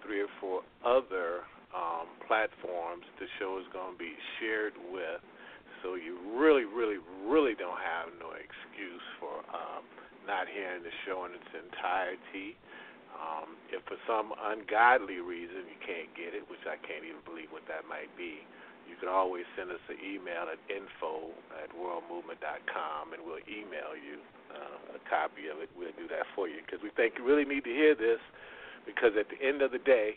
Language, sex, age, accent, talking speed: English, male, 40-59, American, 185 wpm